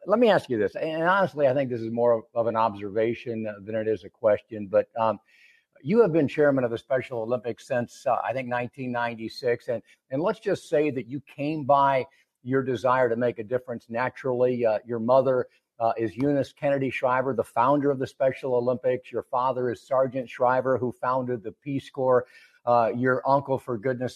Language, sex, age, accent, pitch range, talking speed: English, male, 50-69, American, 120-150 Hz, 195 wpm